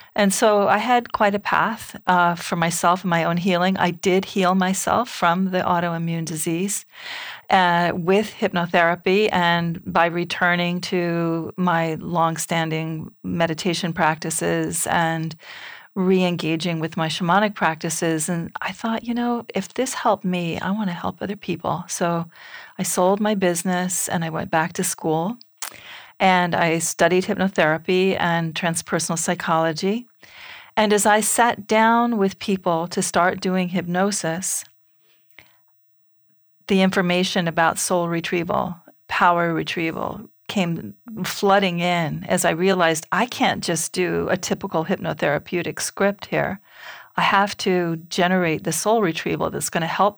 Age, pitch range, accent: 40-59, 170-195 Hz, American